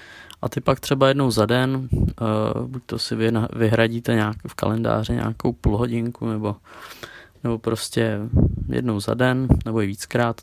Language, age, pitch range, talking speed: Czech, 20-39, 110-125 Hz, 150 wpm